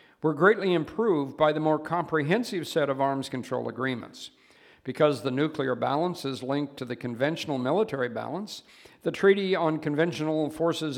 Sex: male